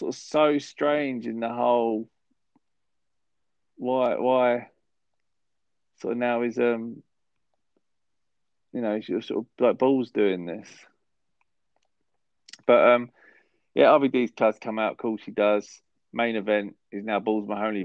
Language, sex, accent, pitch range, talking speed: English, male, British, 100-120 Hz, 130 wpm